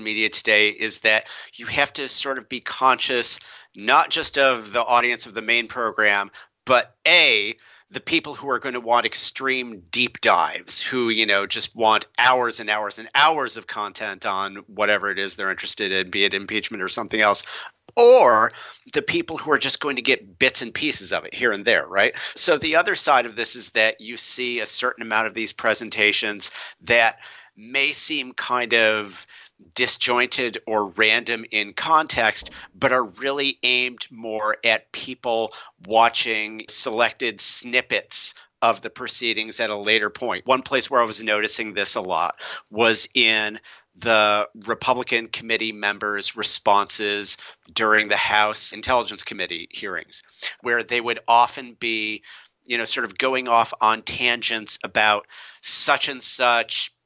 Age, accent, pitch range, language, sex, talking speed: 50-69, American, 105-125 Hz, English, male, 165 wpm